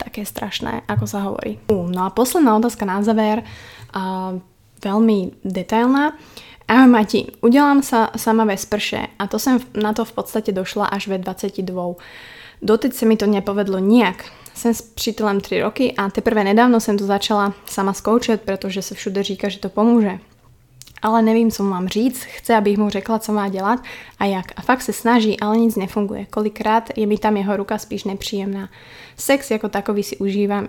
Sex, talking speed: female, 180 wpm